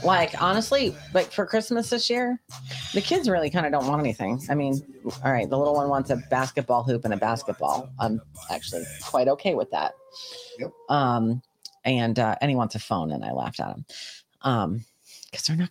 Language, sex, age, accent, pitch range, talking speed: English, female, 40-59, American, 135-185 Hz, 200 wpm